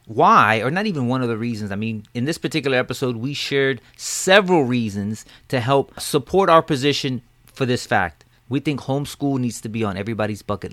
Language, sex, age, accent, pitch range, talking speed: English, male, 30-49, American, 125-180 Hz, 195 wpm